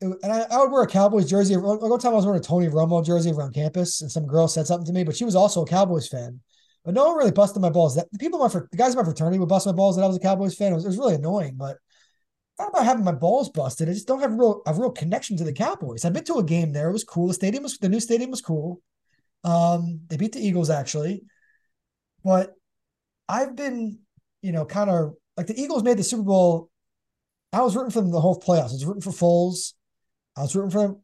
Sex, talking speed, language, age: male, 270 wpm, English, 20-39